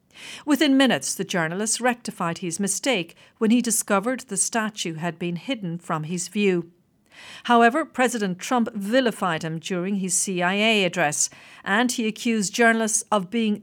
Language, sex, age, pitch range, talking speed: English, female, 50-69, 175-235 Hz, 145 wpm